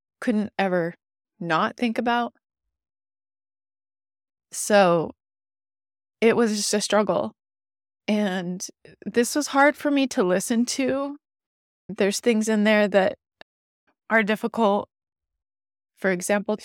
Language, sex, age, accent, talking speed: English, female, 20-39, American, 105 wpm